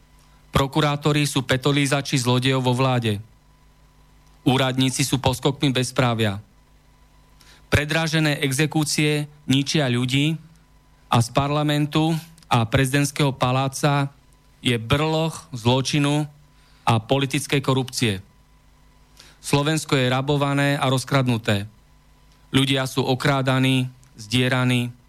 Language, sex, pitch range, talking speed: Slovak, male, 125-145 Hz, 85 wpm